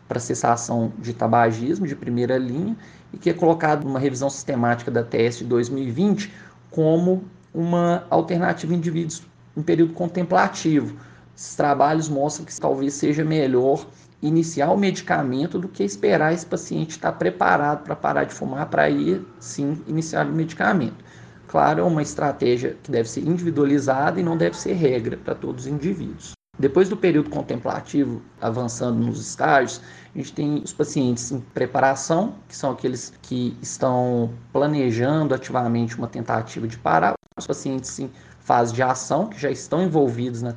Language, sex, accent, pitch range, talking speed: Portuguese, male, Brazilian, 120-165 Hz, 160 wpm